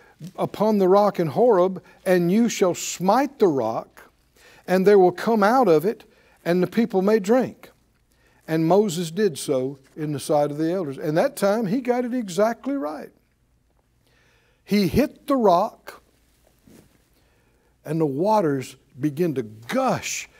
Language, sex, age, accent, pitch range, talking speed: English, male, 60-79, American, 160-225 Hz, 150 wpm